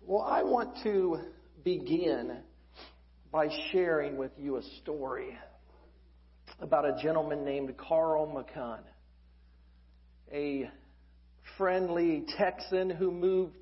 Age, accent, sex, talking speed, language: 50-69, American, male, 95 wpm, English